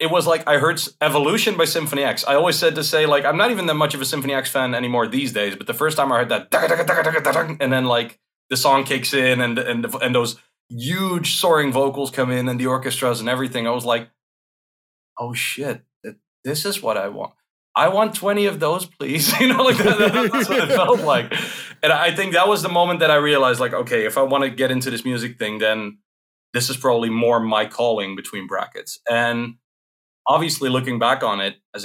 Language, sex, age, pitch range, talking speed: English, male, 30-49, 115-140 Hz, 225 wpm